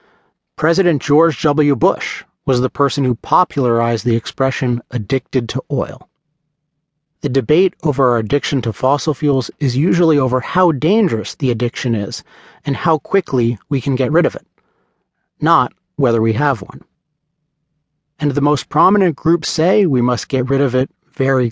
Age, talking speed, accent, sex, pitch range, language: 40-59, 160 wpm, American, male, 125-155 Hz, English